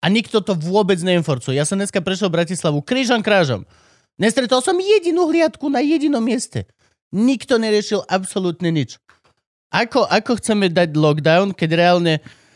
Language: Slovak